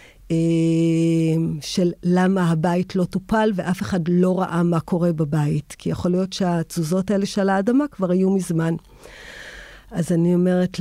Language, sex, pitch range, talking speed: Hebrew, female, 170-220 Hz, 140 wpm